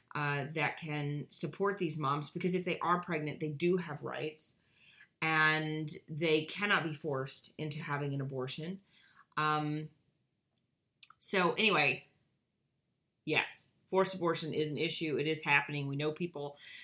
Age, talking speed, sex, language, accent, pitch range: 30-49, 140 wpm, female, English, American, 150-180 Hz